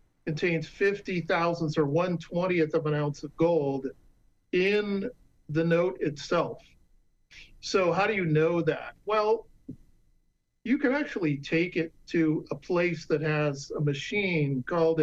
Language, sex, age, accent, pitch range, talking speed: English, male, 50-69, American, 150-175 Hz, 140 wpm